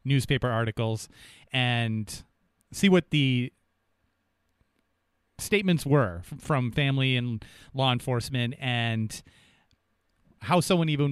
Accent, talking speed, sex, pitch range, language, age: American, 90 wpm, male, 115-140 Hz, English, 30-49